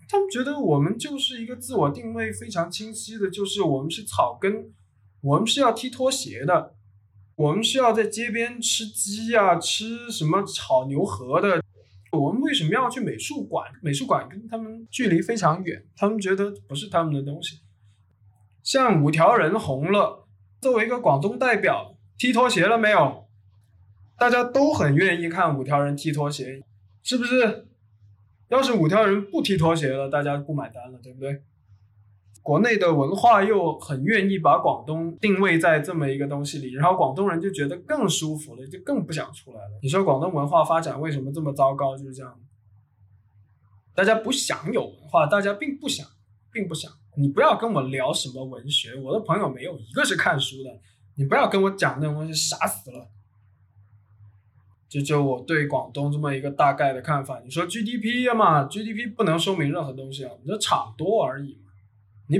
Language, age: Chinese, 20-39